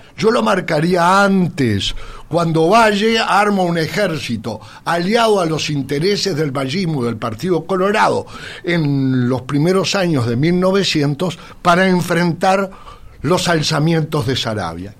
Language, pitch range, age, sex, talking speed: Spanish, 125-185 Hz, 60-79, male, 120 wpm